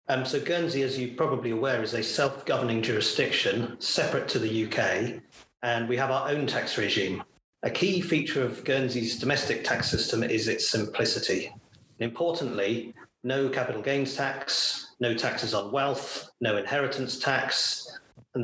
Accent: British